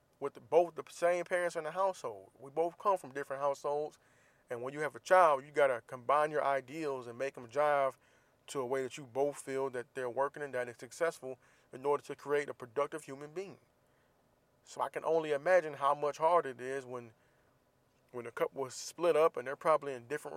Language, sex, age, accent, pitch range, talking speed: English, male, 20-39, American, 125-150 Hz, 215 wpm